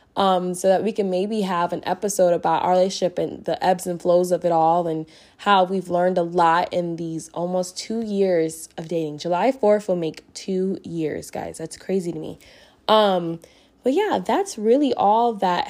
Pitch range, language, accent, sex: 175-205 Hz, English, American, female